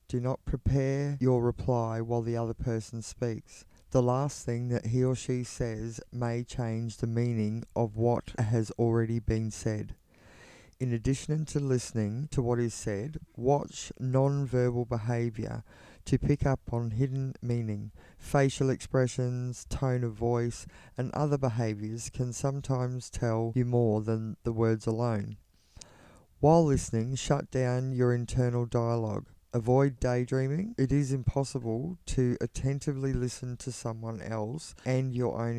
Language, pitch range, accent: English, 115-130 Hz, Australian